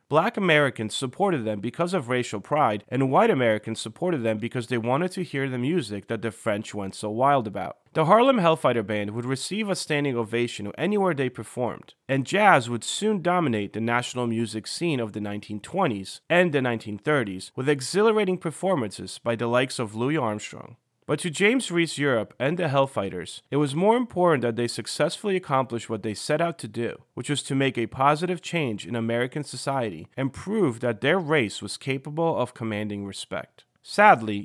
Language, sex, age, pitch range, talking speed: English, male, 30-49, 110-150 Hz, 185 wpm